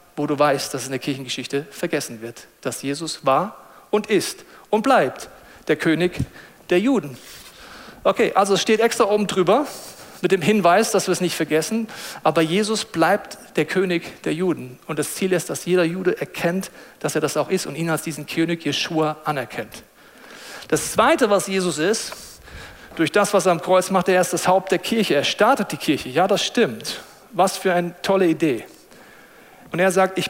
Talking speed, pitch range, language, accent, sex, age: 190 wpm, 150-195 Hz, German, German, male, 40-59